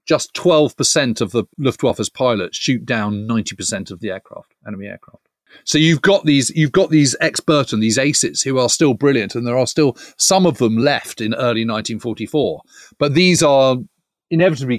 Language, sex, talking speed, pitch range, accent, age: English, male, 180 wpm, 105-145 Hz, British, 40-59